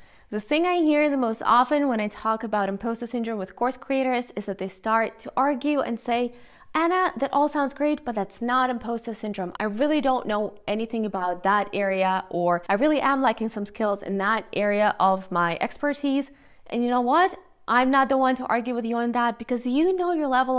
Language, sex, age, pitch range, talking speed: English, female, 10-29, 205-280 Hz, 215 wpm